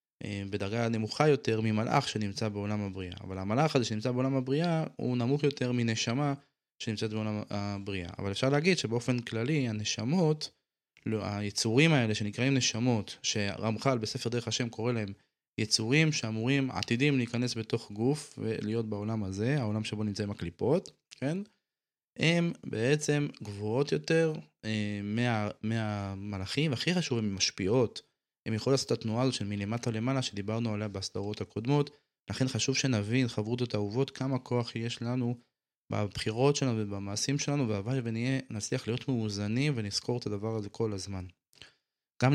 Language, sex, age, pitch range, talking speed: Hebrew, male, 20-39, 105-130 Hz, 140 wpm